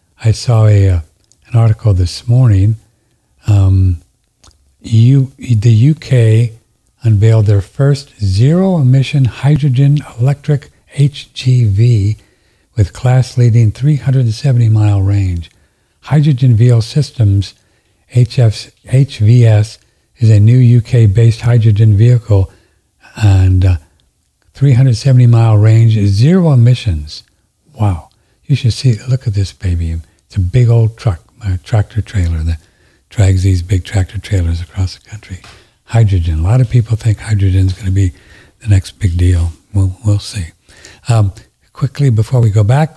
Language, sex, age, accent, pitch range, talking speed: English, male, 60-79, American, 95-120 Hz, 135 wpm